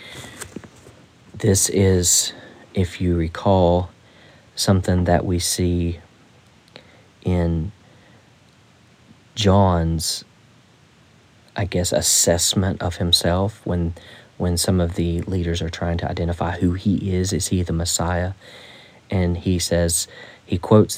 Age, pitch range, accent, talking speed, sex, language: 40-59, 85-100 Hz, American, 110 wpm, male, English